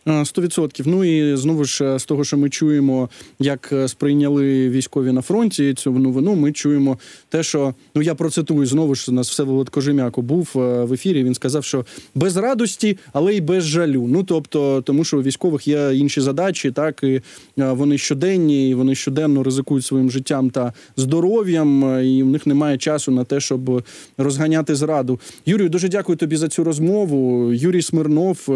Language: Ukrainian